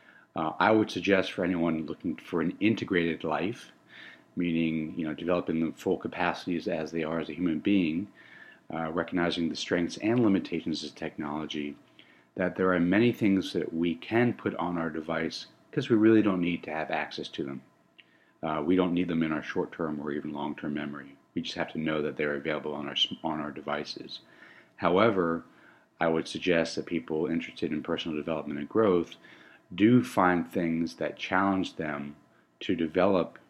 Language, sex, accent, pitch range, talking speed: English, male, American, 80-90 Hz, 185 wpm